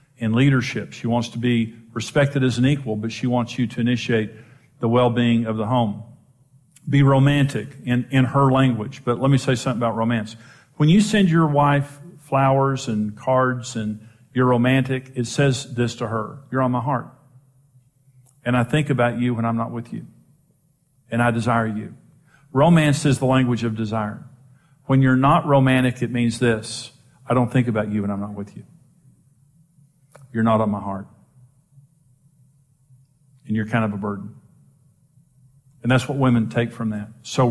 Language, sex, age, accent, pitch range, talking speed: English, male, 50-69, American, 115-140 Hz, 175 wpm